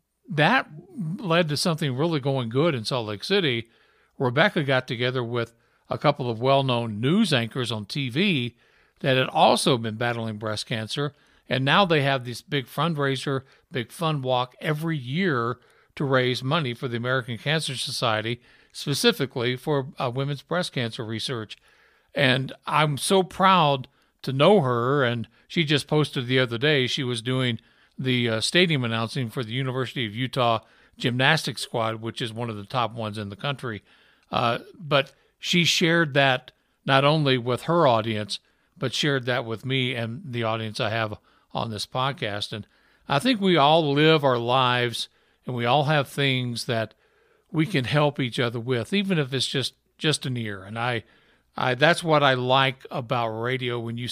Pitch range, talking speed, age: 120-150 Hz, 175 wpm, 60-79